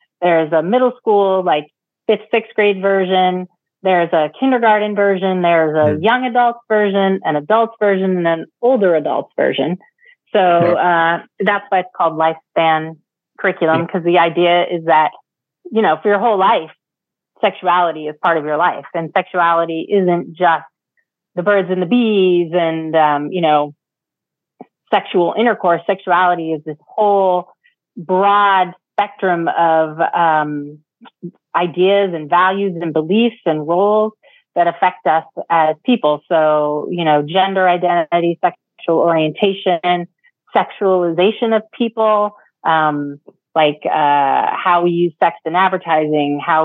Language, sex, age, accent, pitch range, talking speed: English, female, 30-49, American, 160-195 Hz, 135 wpm